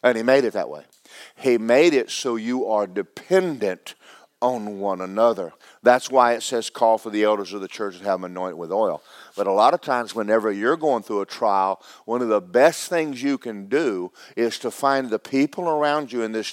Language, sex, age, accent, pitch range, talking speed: English, male, 50-69, American, 110-140 Hz, 220 wpm